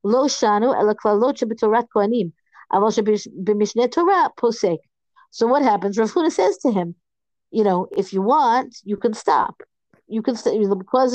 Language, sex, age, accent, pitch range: English, female, 50-69, American, 195-240 Hz